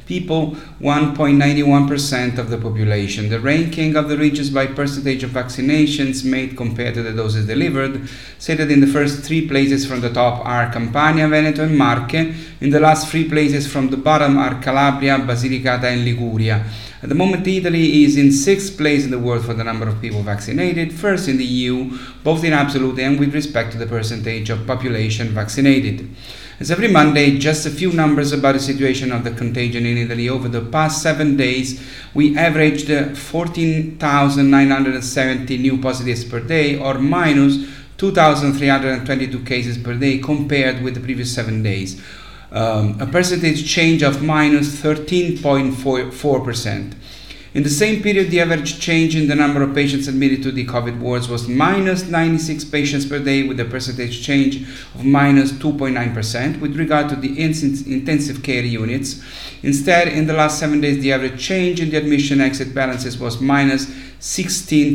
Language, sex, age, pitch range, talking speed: English, male, 30-49, 125-150 Hz, 165 wpm